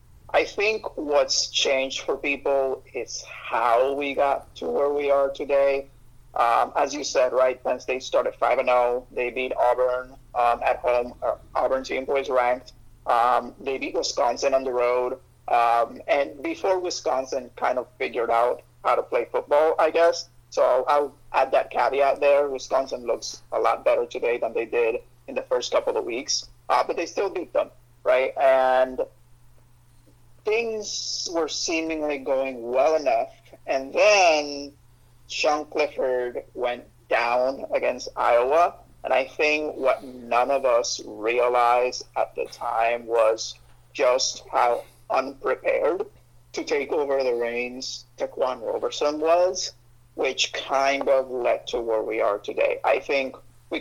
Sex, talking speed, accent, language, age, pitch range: male, 150 wpm, American, English, 30-49, 120-155 Hz